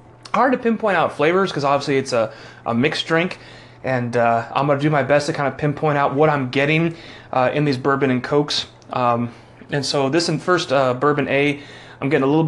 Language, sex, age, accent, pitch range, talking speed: English, male, 30-49, American, 125-160 Hz, 225 wpm